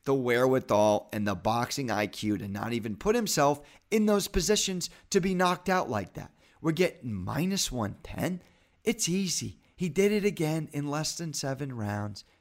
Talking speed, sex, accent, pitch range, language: 170 wpm, male, American, 130-215 Hz, English